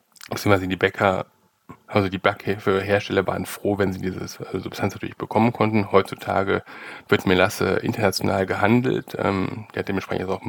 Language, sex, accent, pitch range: German, male, German, 95-110 Hz